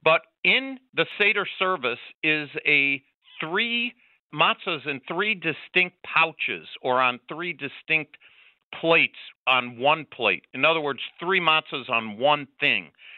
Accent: American